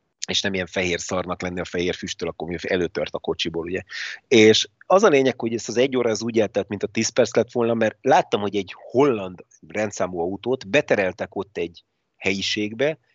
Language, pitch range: Hungarian, 95-115 Hz